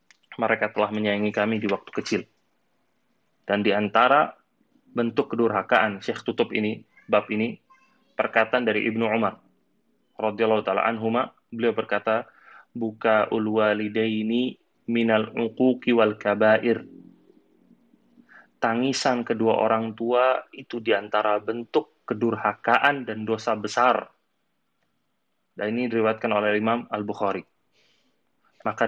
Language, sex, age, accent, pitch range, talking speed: Indonesian, male, 20-39, native, 110-145 Hz, 105 wpm